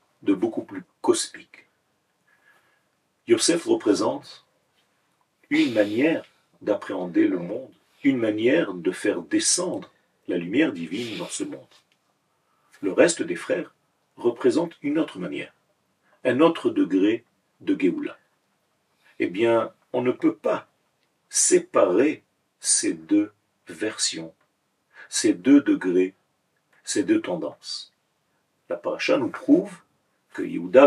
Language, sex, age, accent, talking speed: French, male, 50-69, French, 110 wpm